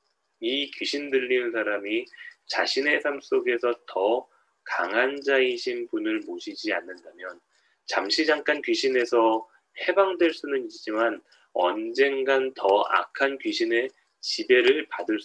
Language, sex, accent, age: Korean, male, native, 20-39